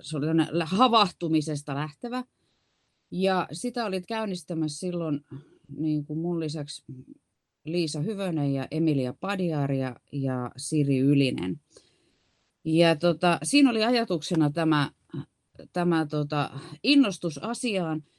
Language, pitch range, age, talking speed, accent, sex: Finnish, 130-160 Hz, 30-49, 105 wpm, native, female